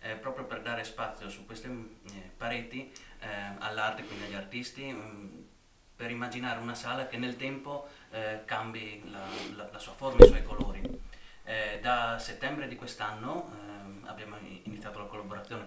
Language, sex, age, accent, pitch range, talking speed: Italian, male, 30-49, native, 100-115 Hz, 160 wpm